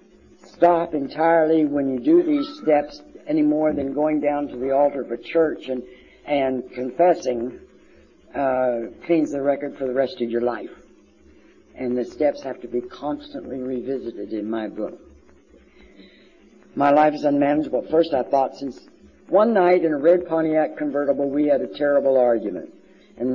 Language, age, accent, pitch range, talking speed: English, 60-79, American, 125-150 Hz, 160 wpm